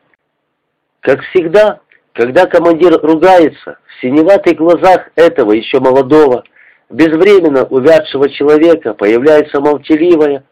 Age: 50-69